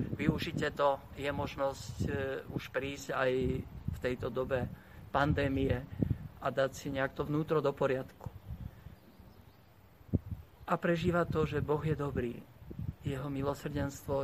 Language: Slovak